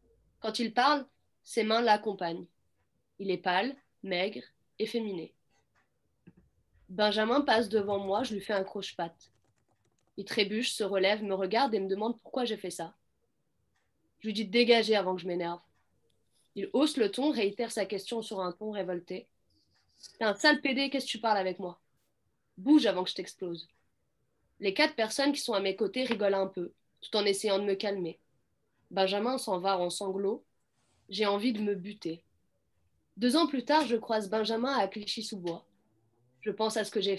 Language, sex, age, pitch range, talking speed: French, female, 20-39, 185-225 Hz, 185 wpm